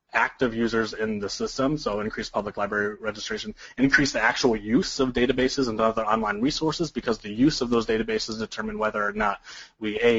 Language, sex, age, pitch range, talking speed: English, male, 30-49, 105-130 Hz, 190 wpm